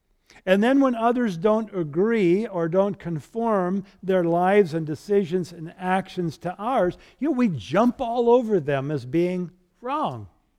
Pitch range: 160-220 Hz